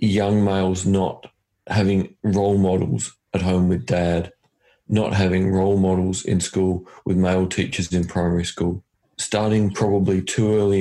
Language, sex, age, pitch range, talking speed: English, male, 40-59, 95-105 Hz, 145 wpm